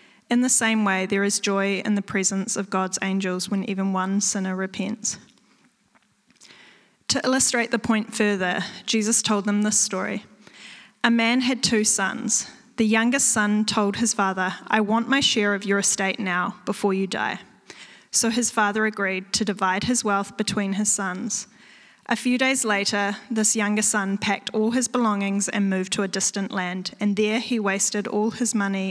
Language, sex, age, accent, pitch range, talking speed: English, female, 10-29, Australian, 200-230 Hz, 175 wpm